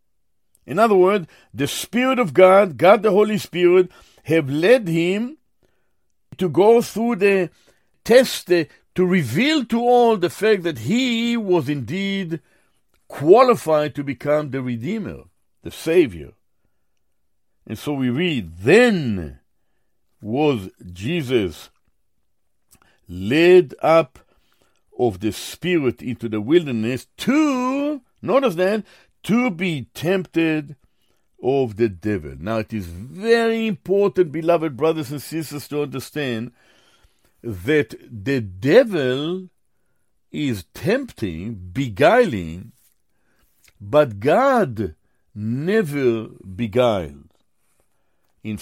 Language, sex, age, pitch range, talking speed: English, male, 60-79, 115-185 Hz, 100 wpm